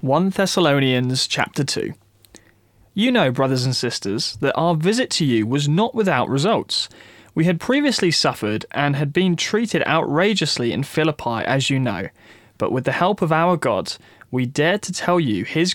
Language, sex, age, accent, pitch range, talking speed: English, male, 20-39, British, 120-180 Hz, 170 wpm